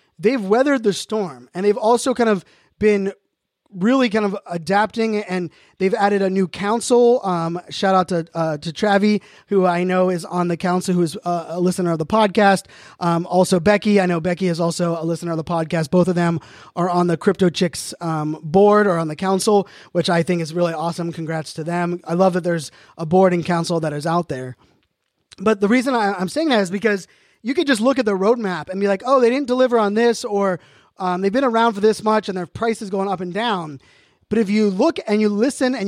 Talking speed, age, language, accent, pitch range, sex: 230 wpm, 20-39, English, American, 170-220 Hz, male